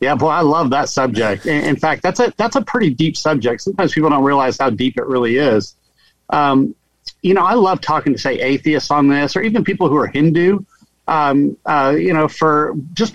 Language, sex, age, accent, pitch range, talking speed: English, male, 50-69, American, 125-170 Hz, 215 wpm